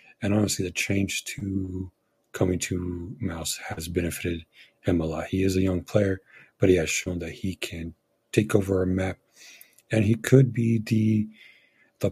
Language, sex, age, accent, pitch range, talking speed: English, male, 40-59, American, 90-105 Hz, 175 wpm